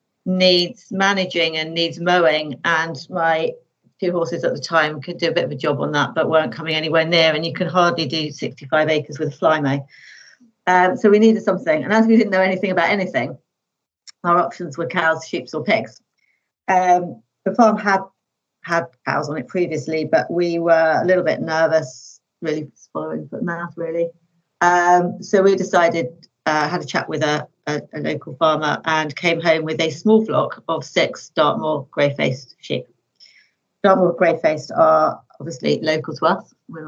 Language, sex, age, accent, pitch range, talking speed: English, female, 40-59, British, 155-185 Hz, 185 wpm